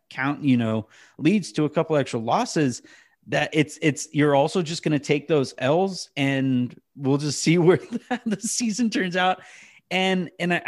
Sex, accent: male, American